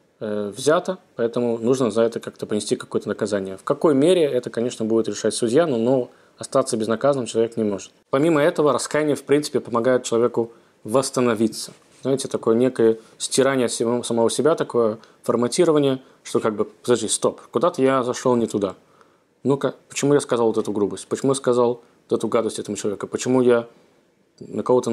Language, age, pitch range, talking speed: Russian, 20-39, 115-140 Hz, 165 wpm